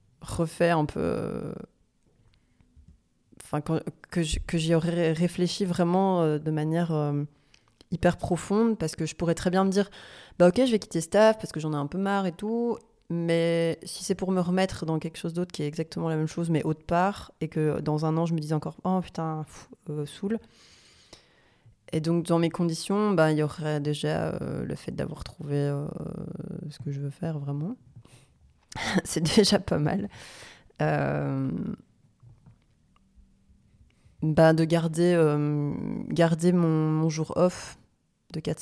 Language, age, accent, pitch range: French, 20-39, French, 150-175 Hz